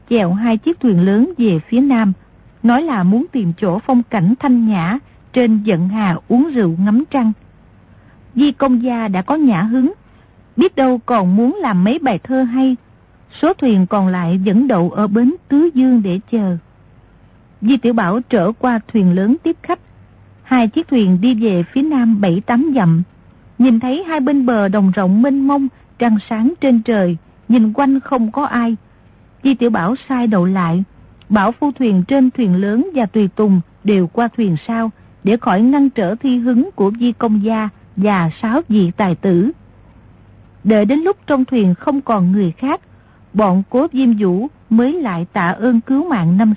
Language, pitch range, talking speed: Vietnamese, 195-255 Hz, 185 wpm